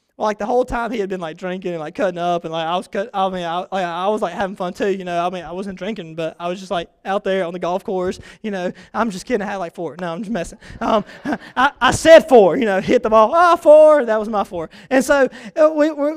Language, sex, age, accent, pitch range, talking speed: English, male, 20-39, American, 195-250 Hz, 295 wpm